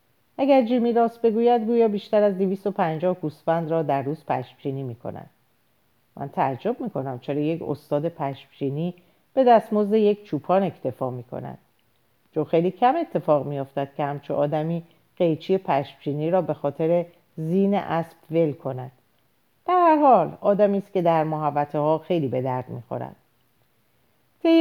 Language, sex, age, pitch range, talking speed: Persian, female, 40-59, 145-200 Hz, 150 wpm